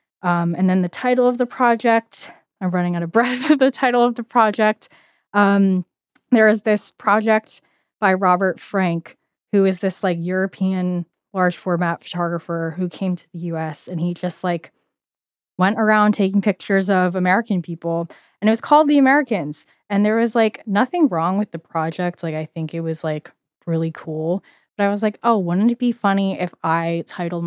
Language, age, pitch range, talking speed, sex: English, 10-29, 160-200 Hz, 185 wpm, female